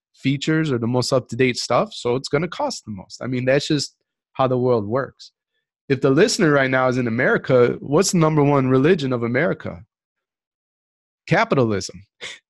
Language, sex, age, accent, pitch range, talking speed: English, male, 30-49, American, 120-150 Hz, 180 wpm